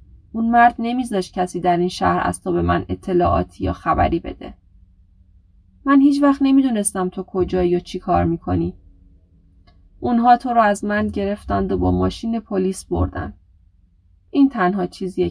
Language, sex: Persian, female